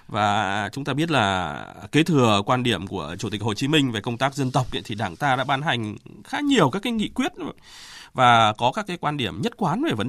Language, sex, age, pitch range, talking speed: Vietnamese, male, 20-39, 110-155 Hz, 250 wpm